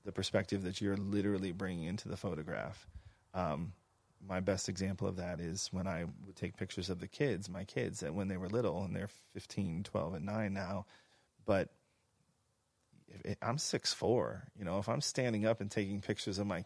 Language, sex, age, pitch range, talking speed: English, male, 30-49, 95-115 Hz, 200 wpm